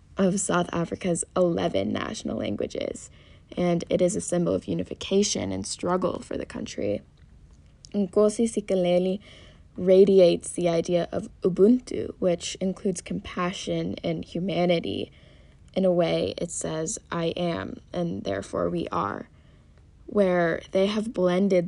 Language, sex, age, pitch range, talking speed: English, female, 20-39, 175-195 Hz, 125 wpm